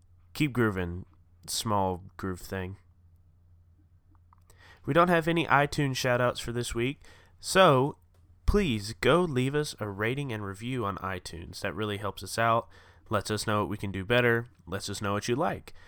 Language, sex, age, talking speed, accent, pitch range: English, male, 20-39, 165 wpm, American, 90-120 Hz